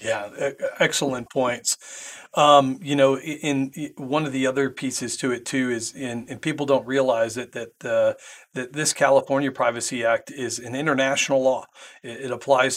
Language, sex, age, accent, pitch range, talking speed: English, male, 40-59, American, 120-140 Hz, 175 wpm